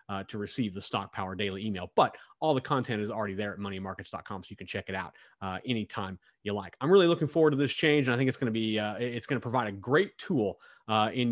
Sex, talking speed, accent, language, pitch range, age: male, 265 wpm, American, English, 110-165 Hz, 30-49